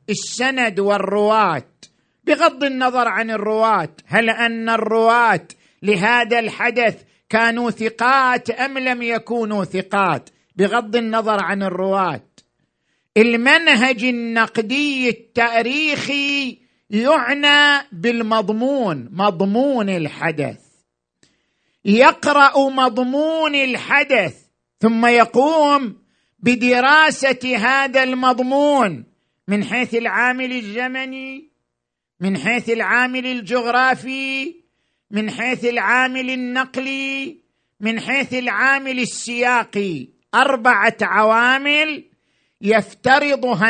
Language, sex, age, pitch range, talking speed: Arabic, male, 50-69, 210-260 Hz, 75 wpm